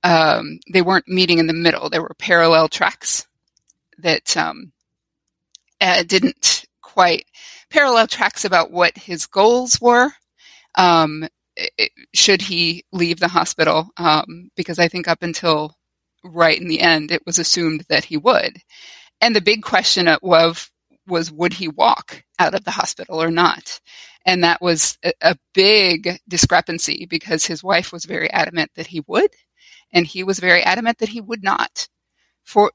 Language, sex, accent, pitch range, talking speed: English, female, American, 165-210 Hz, 160 wpm